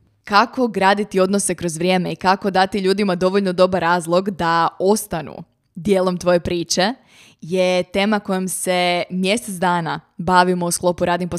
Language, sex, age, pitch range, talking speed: Croatian, female, 20-39, 175-205 Hz, 150 wpm